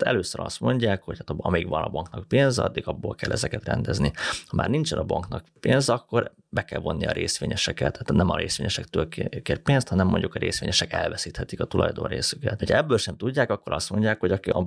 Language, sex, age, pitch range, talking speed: Hungarian, male, 30-49, 85-110 Hz, 210 wpm